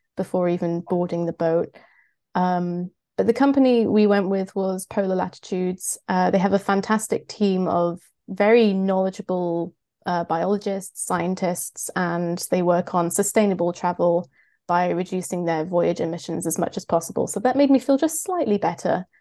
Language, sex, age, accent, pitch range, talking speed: English, female, 20-39, British, 175-210 Hz, 155 wpm